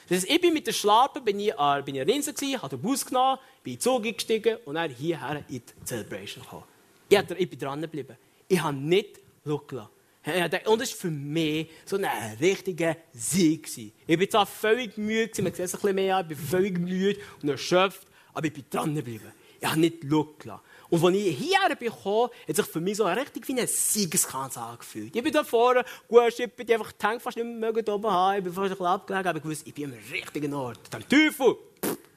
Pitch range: 150-220 Hz